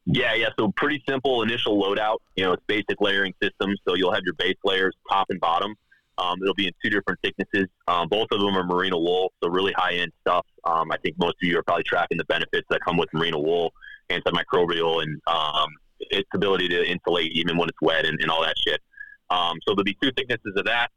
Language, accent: English, American